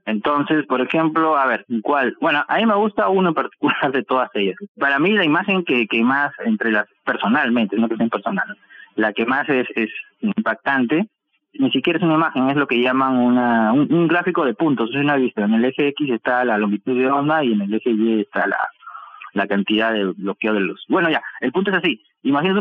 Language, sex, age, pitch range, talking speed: Spanish, male, 30-49, 115-185 Hz, 225 wpm